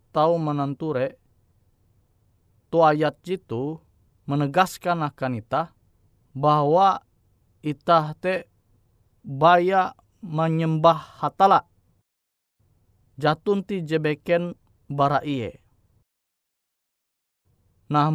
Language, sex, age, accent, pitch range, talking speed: Indonesian, male, 20-39, native, 105-165 Hz, 65 wpm